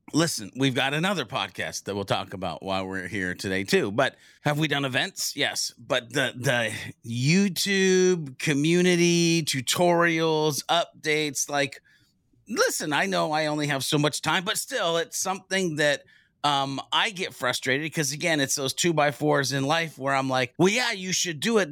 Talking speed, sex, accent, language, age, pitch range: 170 wpm, male, American, English, 30-49, 130-170 Hz